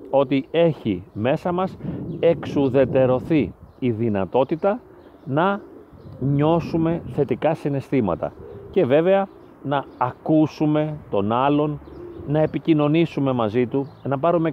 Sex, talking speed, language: male, 95 wpm, Greek